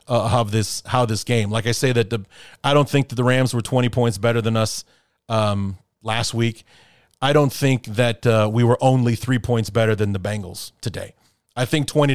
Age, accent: 30-49, American